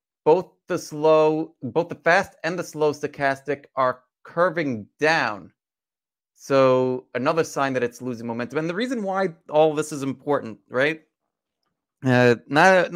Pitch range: 130-160 Hz